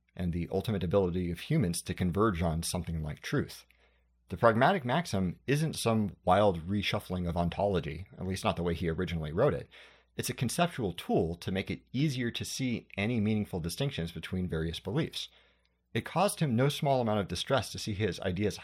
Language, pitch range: English, 85-120 Hz